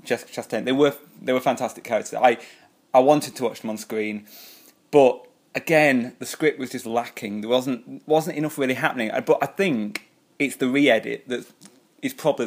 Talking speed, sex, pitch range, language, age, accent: 185 wpm, male, 130-165 Hz, English, 20-39, British